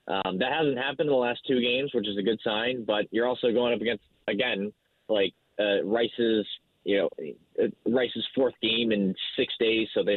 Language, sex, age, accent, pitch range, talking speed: English, male, 20-39, American, 100-130 Hz, 205 wpm